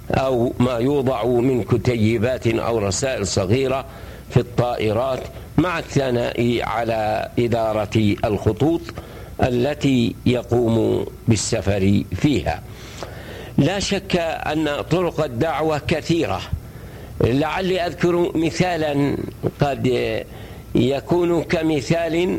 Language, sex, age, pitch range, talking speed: Arabic, male, 60-79, 115-145 Hz, 85 wpm